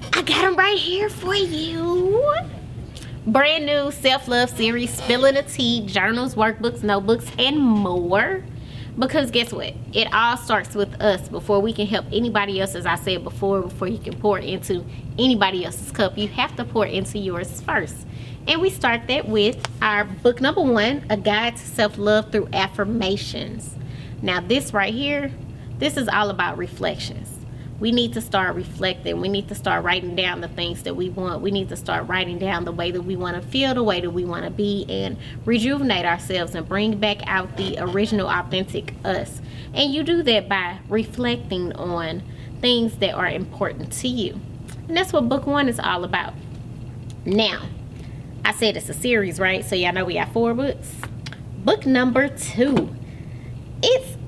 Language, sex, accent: English, female, American